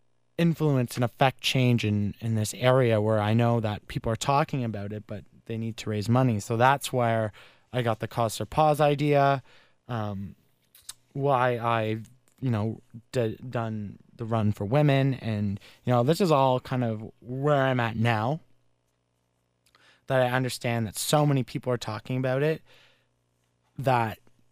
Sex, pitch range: male, 105-130 Hz